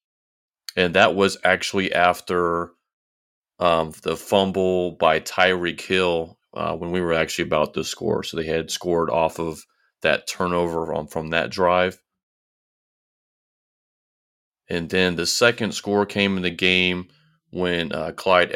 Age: 30-49